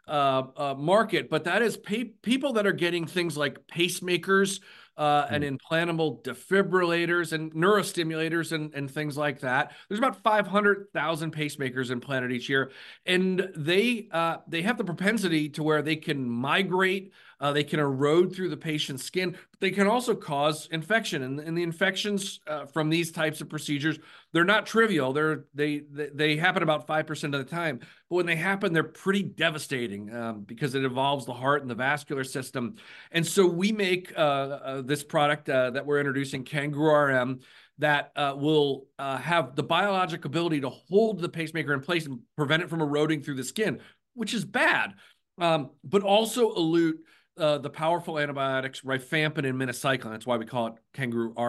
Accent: American